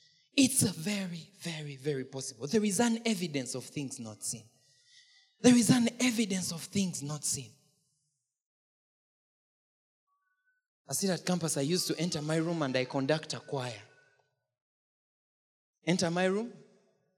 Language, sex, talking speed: English, male, 135 wpm